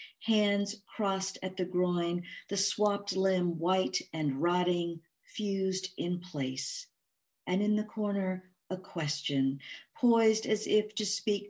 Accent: American